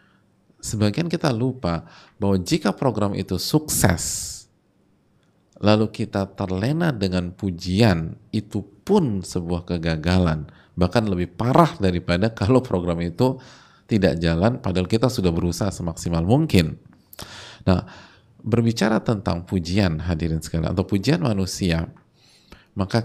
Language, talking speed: Indonesian, 110 wpm